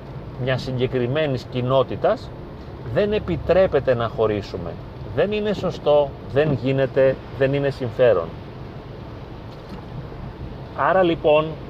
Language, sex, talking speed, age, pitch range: Greek, male, 85 wpm, 40-59, 115-145 Hz